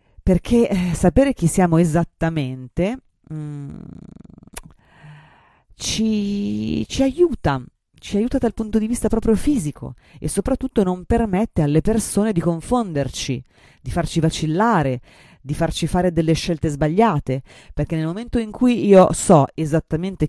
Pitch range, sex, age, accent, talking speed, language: 140-180 Hz, female, 30-49, native, 125 wpm, Italian